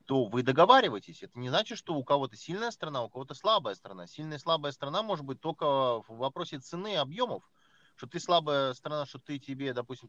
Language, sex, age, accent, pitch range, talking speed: Russian, male, 30-49, native, 130-170 Hz, 210 wpm